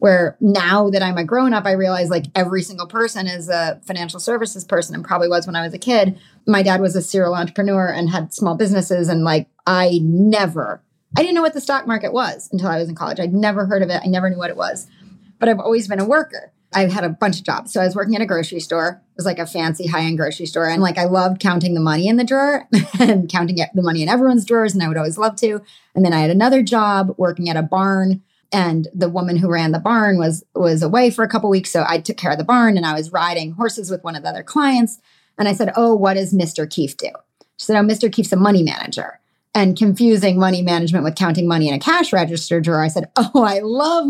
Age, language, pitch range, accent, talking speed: 30-49, English, 170-215 Hz, American, 260 wpm